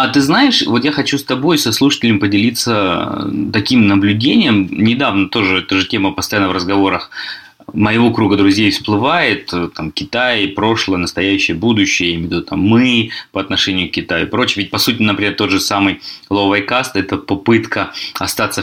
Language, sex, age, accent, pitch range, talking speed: Russian, male, 20-39, native, 95-120 Hz, 165 wpm